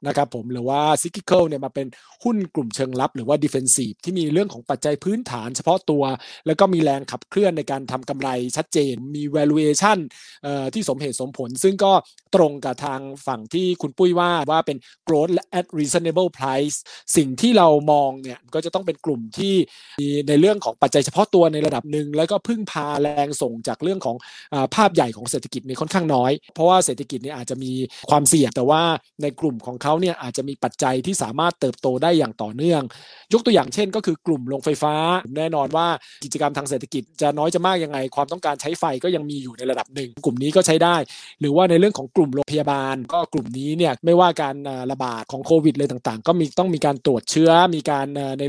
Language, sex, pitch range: Thai, male, 135-170 Hz